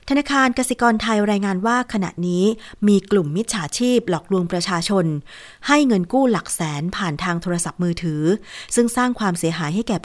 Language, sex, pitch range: Thai, female, 175-225 Hz